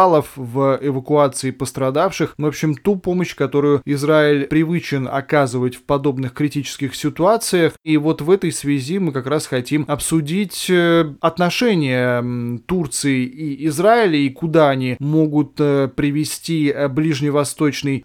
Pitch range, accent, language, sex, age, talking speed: 135-165 Hz, native, Russian, male, 20-39, 115 wpm